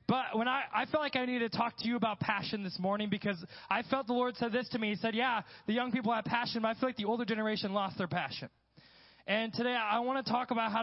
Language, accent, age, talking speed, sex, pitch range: English, American, 20-39, 285 wpm, male, 200-240 Hz